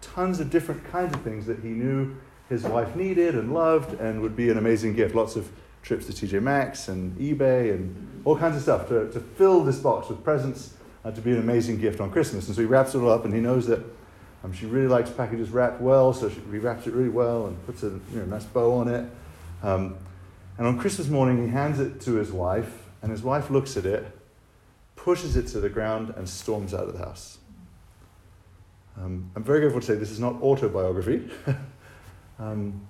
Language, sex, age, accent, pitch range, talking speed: English, male, 40-59, British, 100-135 Hz, 215 wpm